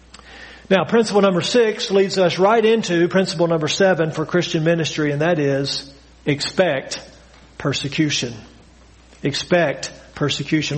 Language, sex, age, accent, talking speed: English, male, 50-69, American, 115 wpm